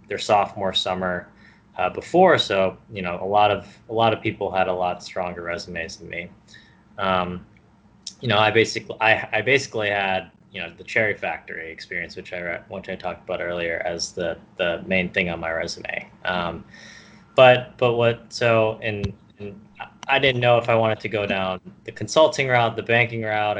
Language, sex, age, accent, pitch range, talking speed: English, male, 20-39, American, 95-110 Hz, 190 wpm